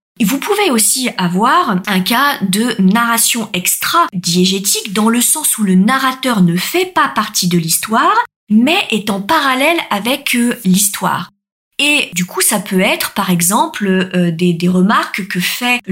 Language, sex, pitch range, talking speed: French, female, 185-225 Hz, 160 wpm